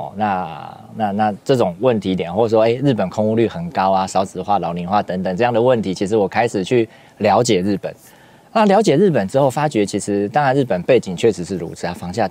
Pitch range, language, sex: 95-120 Hz, Chinese, male